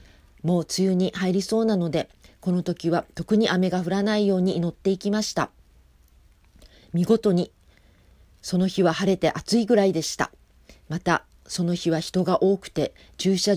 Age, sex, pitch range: 40-59, female, 170-200 Hz